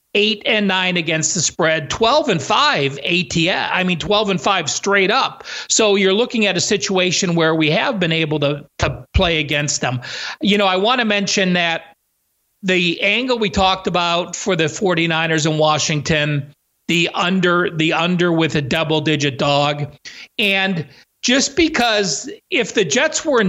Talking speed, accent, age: 170 wpm, American, 40-59